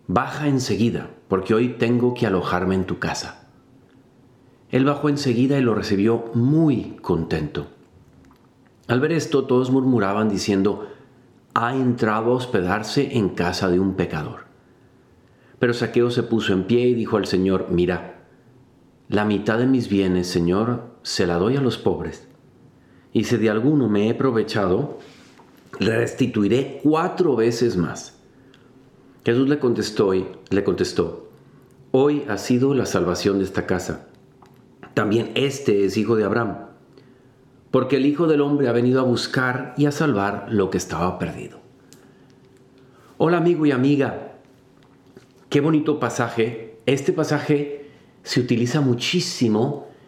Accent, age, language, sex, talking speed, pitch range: Mexican, 40-59, Spanish, male, 135 wpm, 110-135 Hz